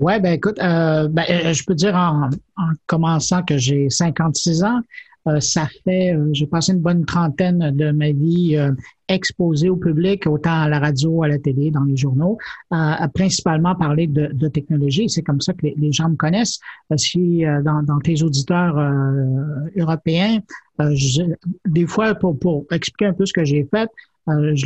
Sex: male